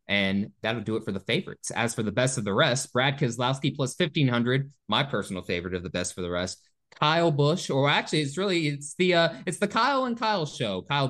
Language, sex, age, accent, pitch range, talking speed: English, male, 20-39, American, 115-160 Hz, 240 wpm